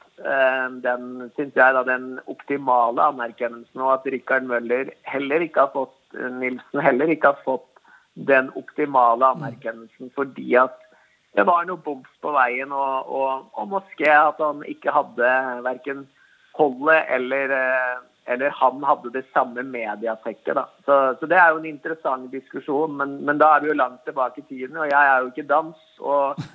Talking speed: 155 wpm